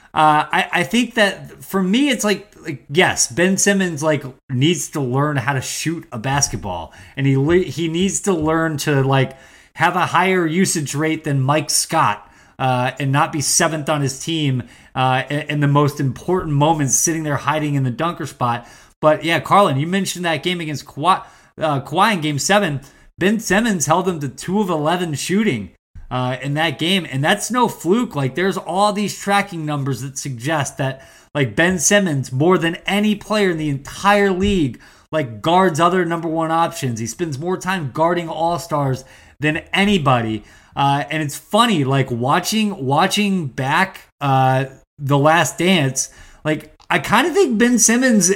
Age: 20-39